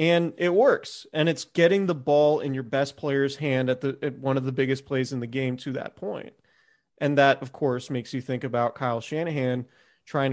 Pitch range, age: 125-140 Hz, 30-49